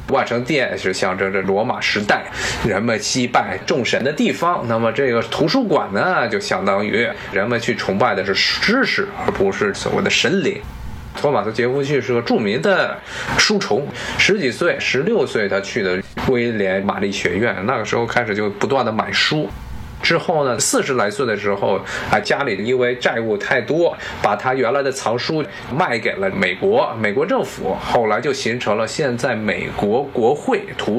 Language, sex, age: Chinese, male, 20-39